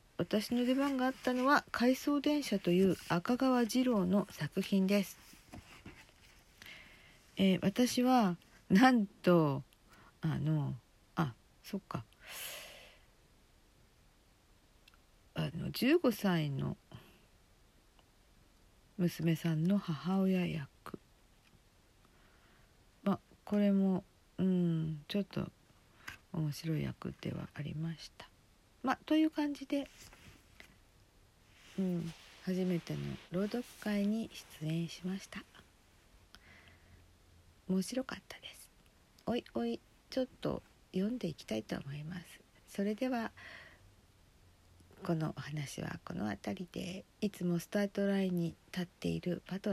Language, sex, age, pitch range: Japanese, female, 50-69, 145-205 Hz